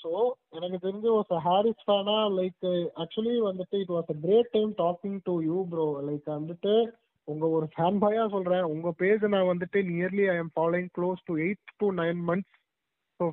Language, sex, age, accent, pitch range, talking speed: English, male, 20-39, Indian, 170-205 Hz, 140 wpm